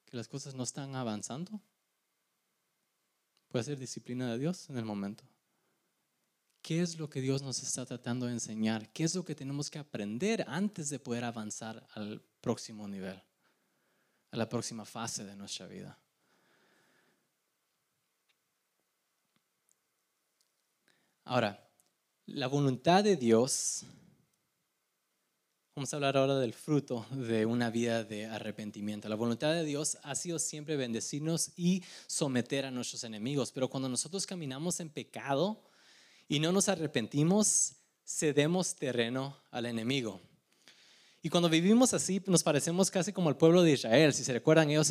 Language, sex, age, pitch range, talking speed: Spanish, male, 20-39, 120-175 Hz, 140 wpm